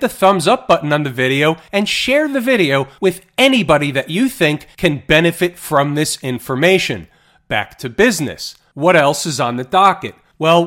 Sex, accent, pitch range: male, American, 135-185 Hz